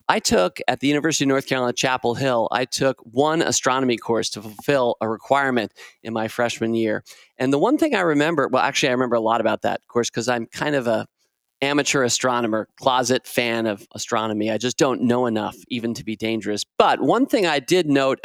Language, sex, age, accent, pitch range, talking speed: English, male, 40-59, American, 115-165 Hz, 210 wpm